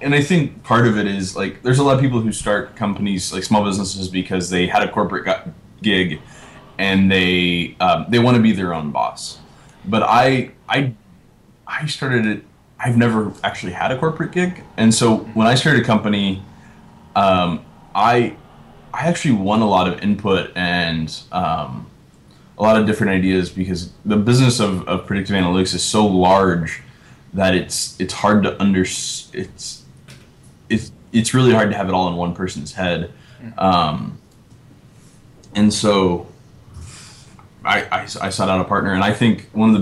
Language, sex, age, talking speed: English, male, 20-39, 175 wpm